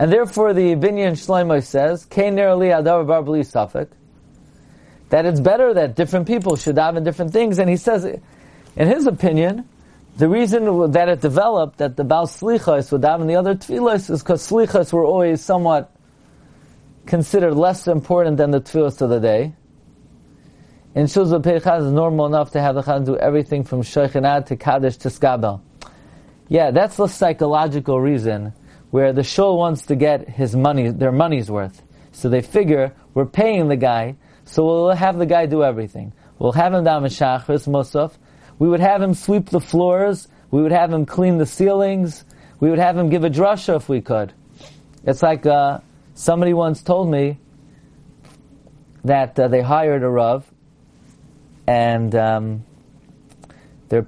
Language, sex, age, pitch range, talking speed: English, male, 40-59, 140-175 Hz, 165 wpm